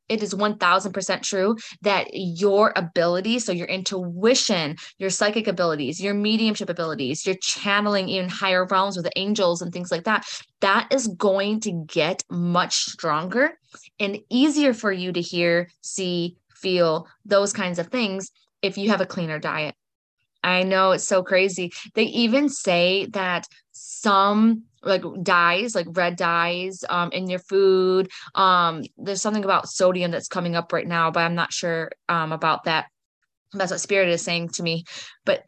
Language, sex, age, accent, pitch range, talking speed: English, female, 20-39, American, 170-200 Hz, 165 wpm